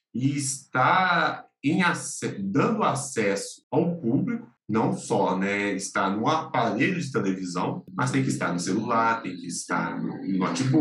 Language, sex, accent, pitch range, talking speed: Portuguese, male, Brazilian, 100-140 Hz, 145 wpm